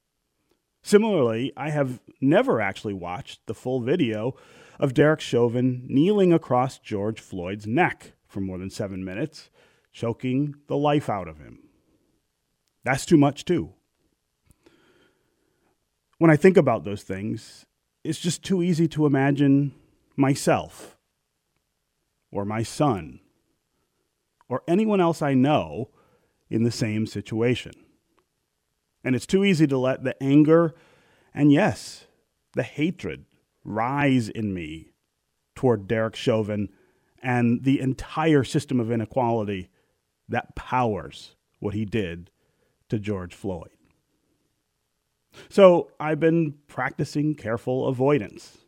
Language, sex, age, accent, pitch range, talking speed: English, male, 30-49, American, 110-150 Hz, 115 wpm